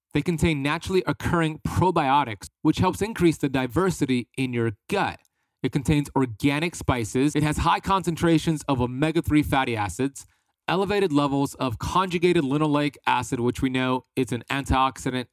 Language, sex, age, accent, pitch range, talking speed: English, male, 30-49, American, 125-155 Hz, 145 wpm